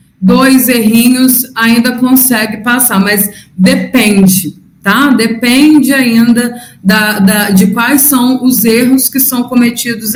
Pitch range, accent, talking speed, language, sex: 220-290 Hz, Brazilian, 105 wpm, Portuguese, female